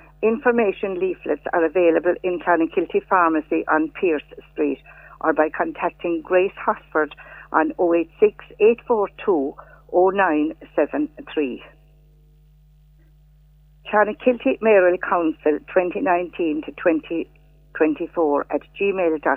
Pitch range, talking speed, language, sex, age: 155-185 Hz, 70 wpm, English, female, 60-79